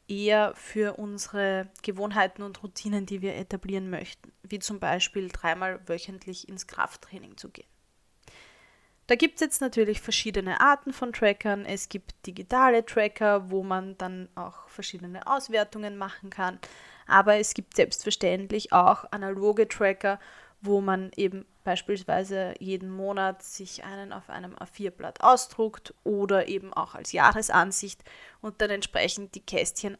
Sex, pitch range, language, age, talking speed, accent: female, 190-215 Hz, German, 20-39, 140 wpm, German